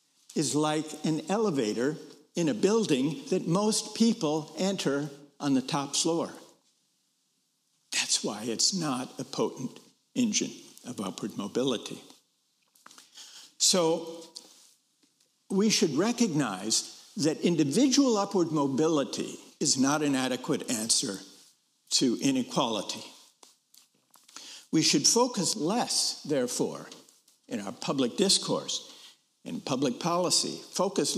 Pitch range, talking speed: 145-215 Hz, 100 wpm